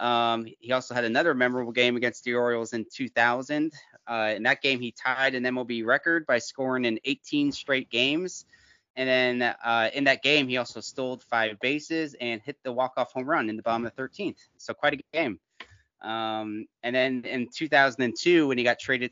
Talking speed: 200 wpm